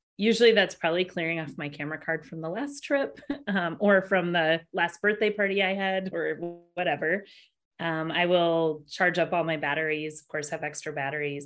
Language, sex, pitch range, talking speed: English, female, 145-195 Hz, 190 wpm